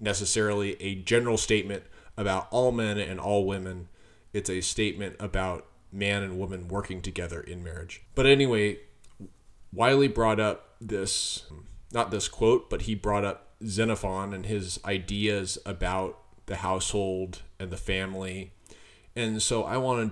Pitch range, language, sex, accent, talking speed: 95-105 Hz, English, male, American, 145 wpm